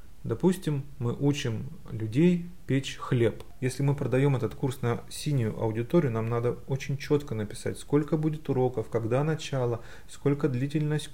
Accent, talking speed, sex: native, 140 wpm, male